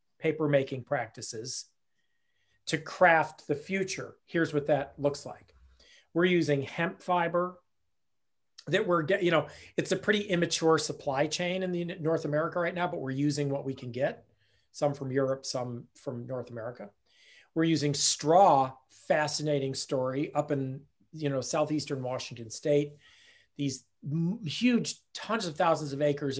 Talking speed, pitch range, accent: 150 wpm, 135-170 Hz, American